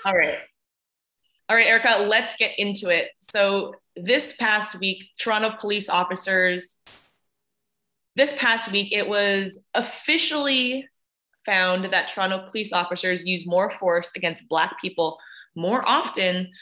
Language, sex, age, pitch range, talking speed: English, female, 20-39, 175-220 Hz, 125 wpm